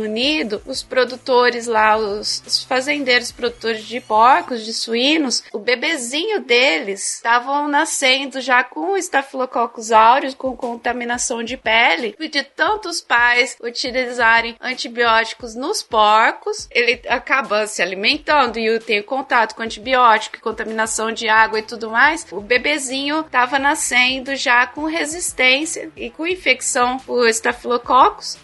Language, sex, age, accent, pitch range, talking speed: Portuguese, female, 20-39, Brazilian, 230-280 Hz, 125 wpm